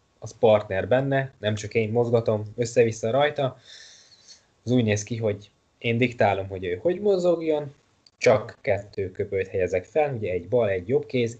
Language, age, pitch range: Hungarian, 20-39, 100-120 Hz